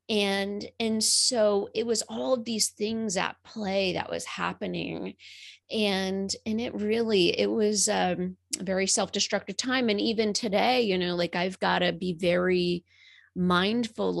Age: 30-49